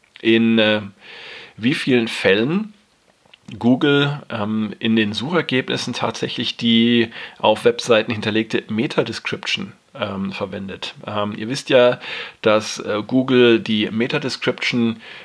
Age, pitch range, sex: 40-59, 105-120 Hz, male